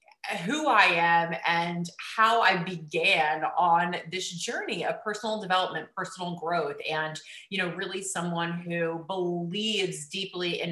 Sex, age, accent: female, 30-49, American